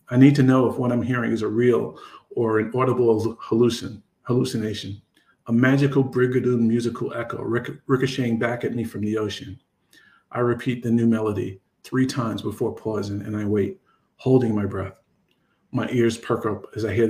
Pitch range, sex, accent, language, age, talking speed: 110-125 Hz, male, American, English, 50-69, 170 wpm